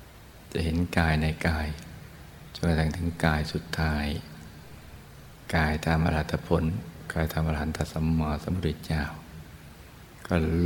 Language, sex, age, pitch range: Thai, male, 60-79, 80-85 Hz